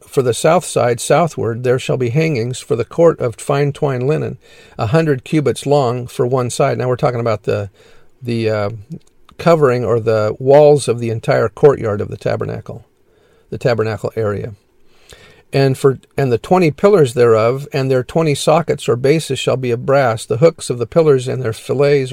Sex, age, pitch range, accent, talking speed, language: male, 50-69, 120-150 Hz, American, 185 wpm, English